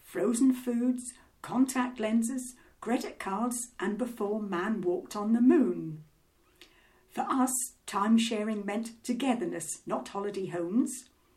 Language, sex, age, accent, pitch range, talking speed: English, female, 60-79, British, 205-265 Hz, 115 wpm